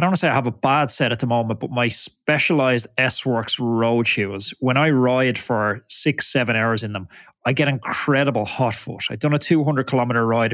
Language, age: English, 20-39